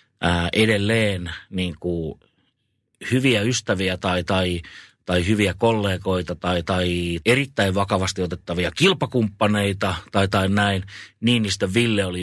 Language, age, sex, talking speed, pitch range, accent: Finnish, 30-49, male, 115 wpm, 90-100 Hz, native